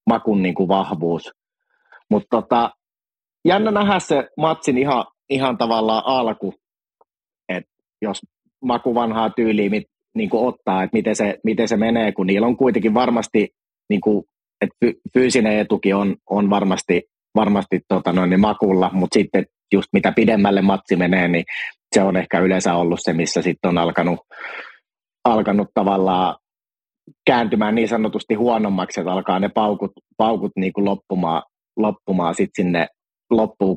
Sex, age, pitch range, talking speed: male, 30-49, 95-115 Hz, 140 wpm